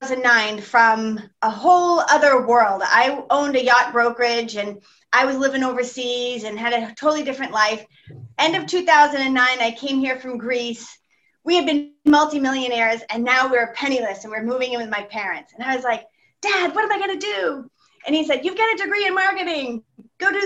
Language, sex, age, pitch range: English, female, 30-49, 225-290 Hz